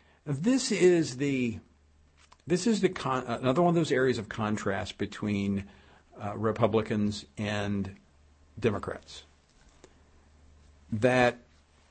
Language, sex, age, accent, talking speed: English, male, 50-69, American, 95 wpm